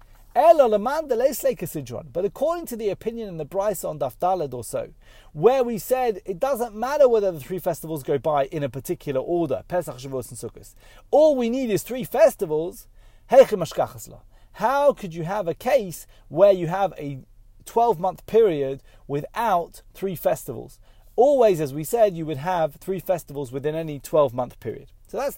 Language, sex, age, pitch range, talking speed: English, male, 30-49, 140-210 Hz, 150 wpm